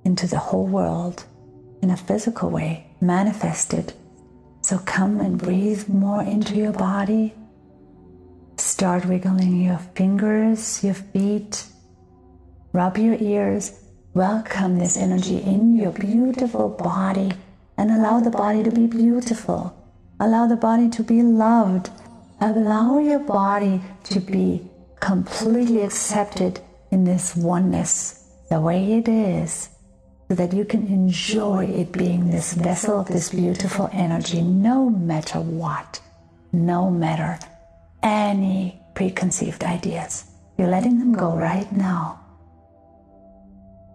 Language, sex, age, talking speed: English, female, 50-69, 115 wpm